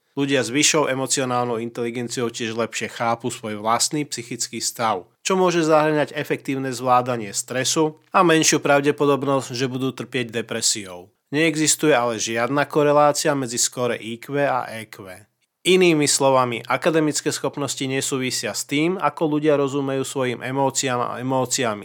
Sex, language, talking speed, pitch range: male, Slovak, 130 wpm, 120-150 Hz